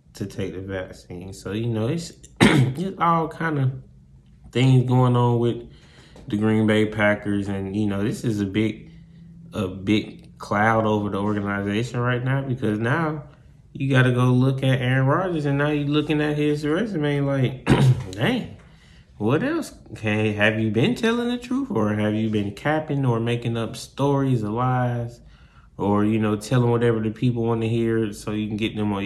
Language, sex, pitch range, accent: English, male, 105-140 Hz, American